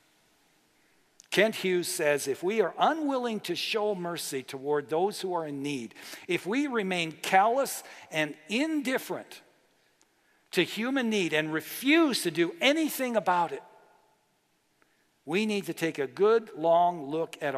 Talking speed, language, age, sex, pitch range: 140 wpm, English, 60-79, male, 145-215 Hz